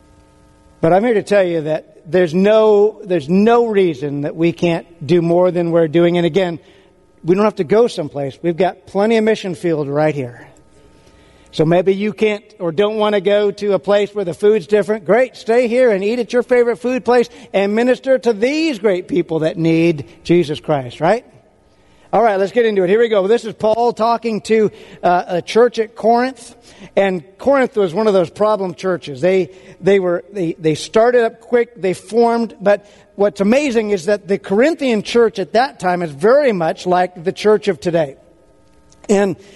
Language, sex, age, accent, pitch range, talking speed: English, male, 50-69, American, 180-225 Hz, 195 wpm